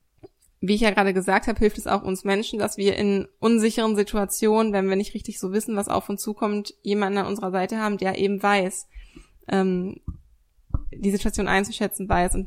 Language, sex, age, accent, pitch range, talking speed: German, female, 20-39, German, 190-220 Hz, 190 wpm